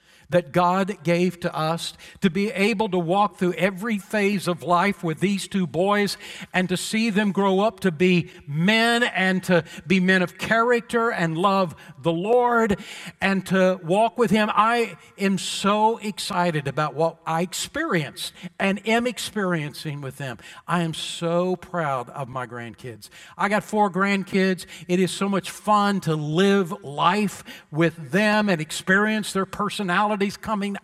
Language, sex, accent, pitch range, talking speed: English, male, American, 165-200 Hz, 160 wpm